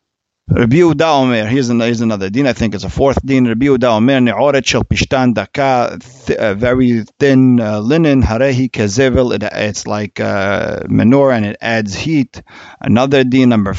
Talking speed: 150 wpm